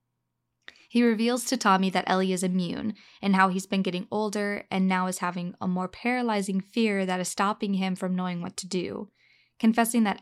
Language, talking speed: English, 195 wpm